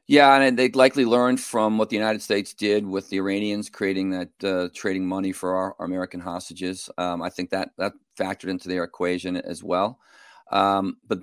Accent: American